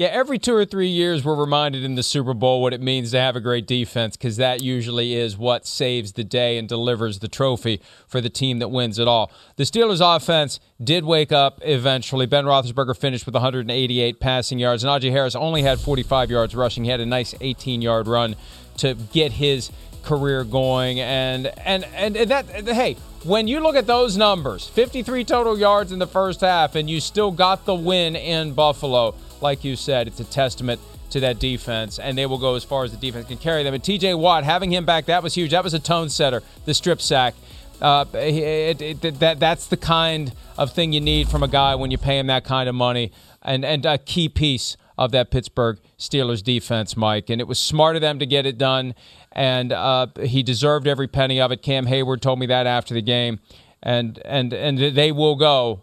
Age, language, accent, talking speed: 30-49, English, American, 215 wpm